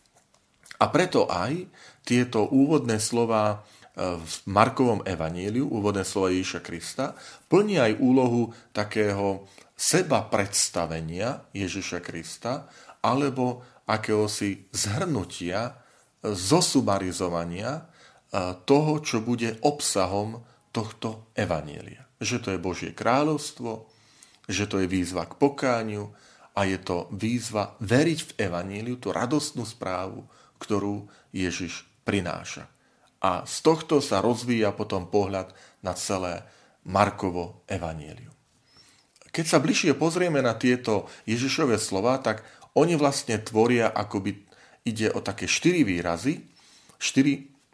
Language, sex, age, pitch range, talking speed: Slovak, male, 40-59, 100-125 Hz, 105 wpm